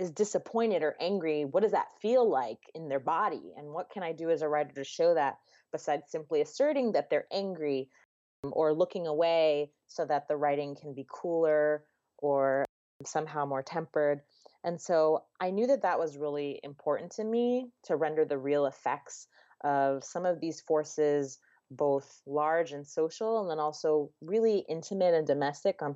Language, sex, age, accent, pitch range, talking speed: English, female, 20-39, American, 150-200 Hz, 175 wpm